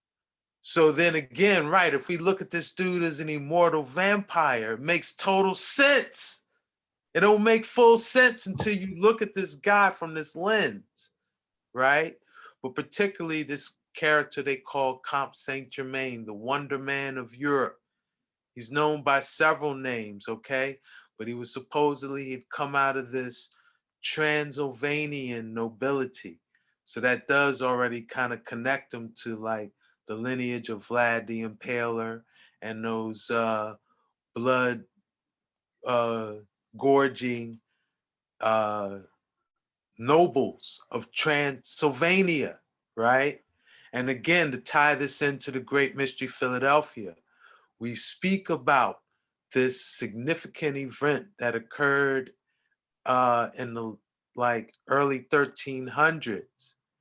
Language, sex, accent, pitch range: English, male, American, 120-155 Hz